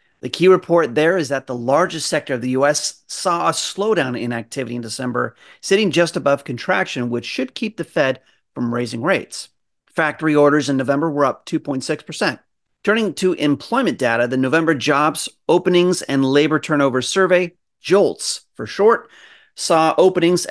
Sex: male